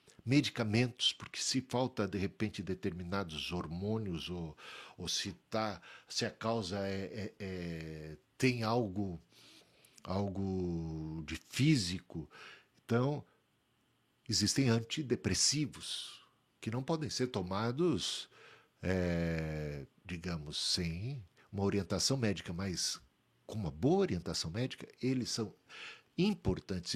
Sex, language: male, Portuguese